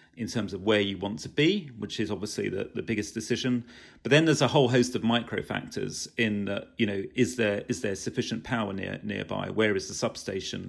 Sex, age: male, 40-59